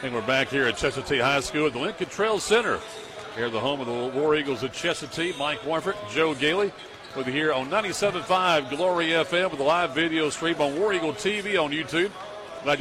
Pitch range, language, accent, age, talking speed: 135-180 Hz, English, American, 50-69, 220 wpm